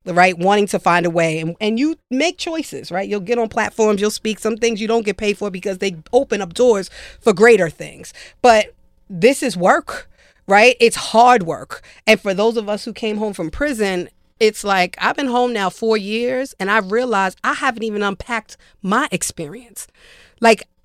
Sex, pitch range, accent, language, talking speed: female, 185-230 Hz, American, English, 200 wpm